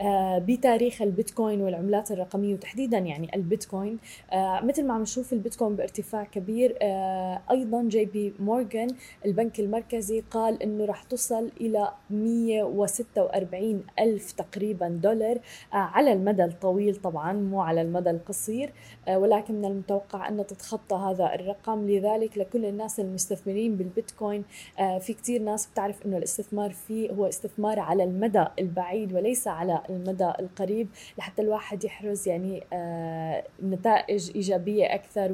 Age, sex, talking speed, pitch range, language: 20-39, female, 130 wpm, 195-230 Hz, Arabic